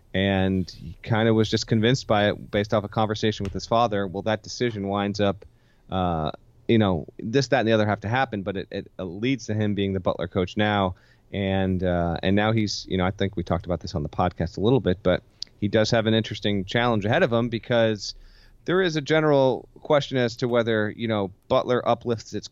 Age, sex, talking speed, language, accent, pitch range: 30-49, male, 230 wpm, English, American, 100-120 Hz